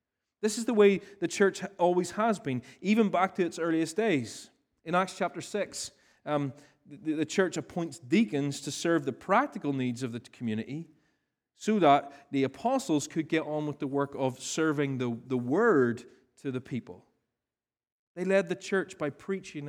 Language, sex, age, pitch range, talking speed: English, male, 30-49, 145-195 Hz, 175 wpm